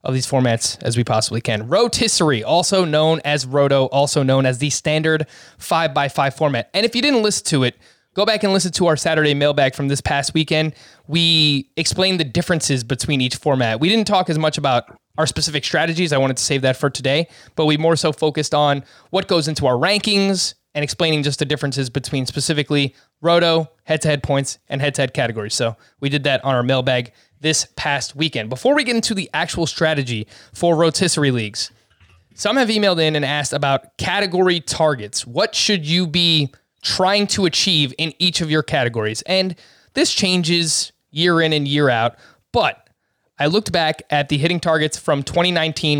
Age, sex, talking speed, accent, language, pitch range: 20-39, male, 190 wpm, American, English, 135-170 Hz